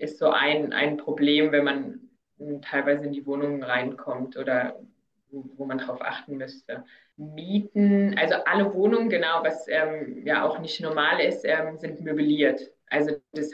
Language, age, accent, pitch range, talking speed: German, 20-39, German, 140-155 Hz, 155 wpm